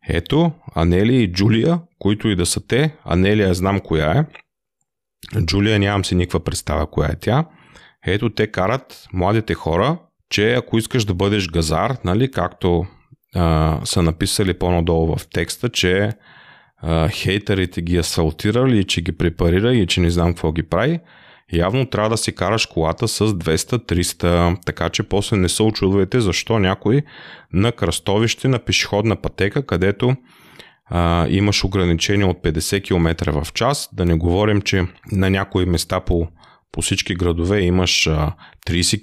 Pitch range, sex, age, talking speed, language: 85-115 Hz, male, 30-49, 155 wpm, Bulgarian